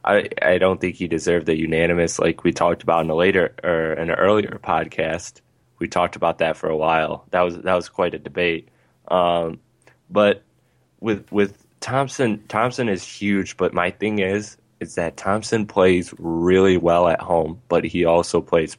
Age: 20-39